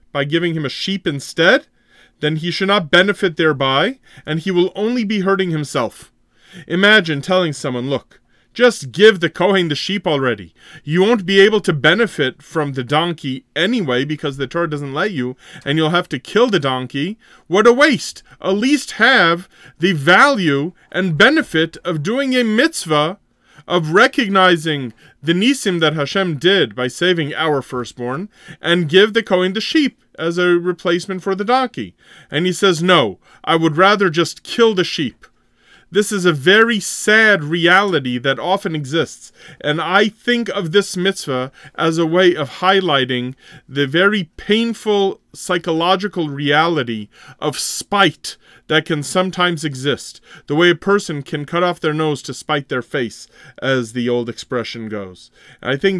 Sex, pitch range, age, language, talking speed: male, 145-195 Hz, 30-49, English, 165 wpm